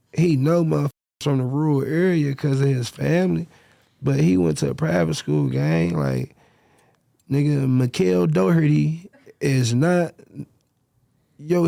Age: 20-39